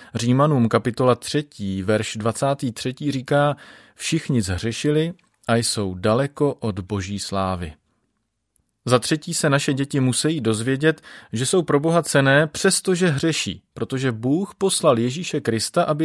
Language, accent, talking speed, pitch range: Czech, native, 125 wpm, 115-150 Hz